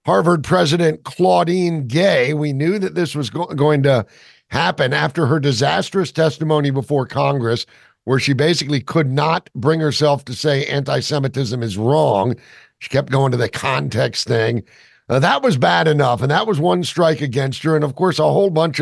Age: 50-69